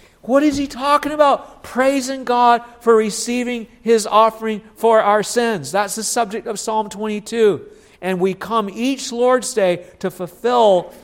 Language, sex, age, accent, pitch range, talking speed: English, male, 50-69, American, 170-220 Hz, 150 wpm